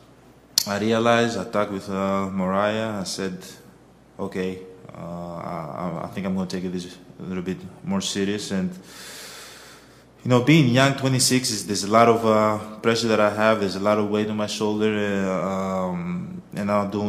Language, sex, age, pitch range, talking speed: English, male, 20-39, 95-105 Hz, 180 wpm